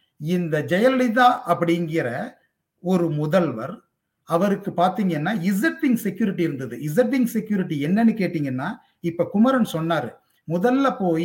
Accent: native